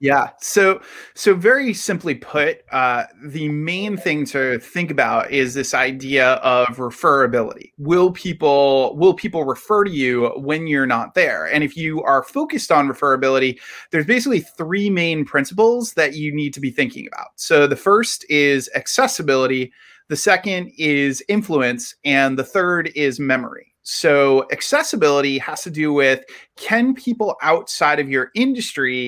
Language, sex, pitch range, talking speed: English, male, 135-180 Hz, 155 wpm